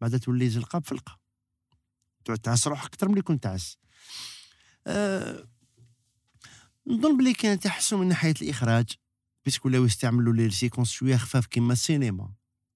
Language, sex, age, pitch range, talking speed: French, male, 50-69, 110-130 Hz, 120 wpm